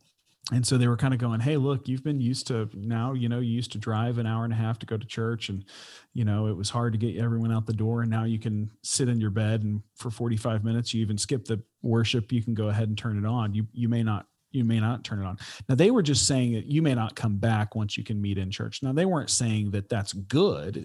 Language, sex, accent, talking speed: English, male, American, 290 wpm